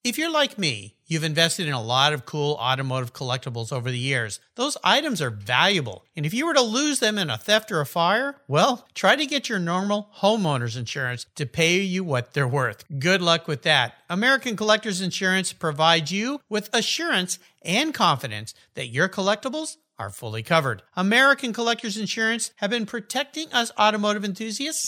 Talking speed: 180 wpm